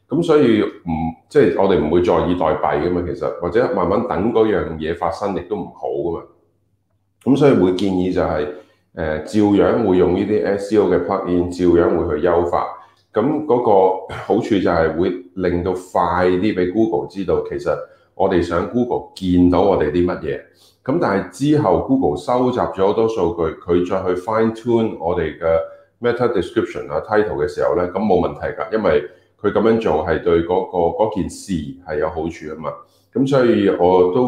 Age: 30-49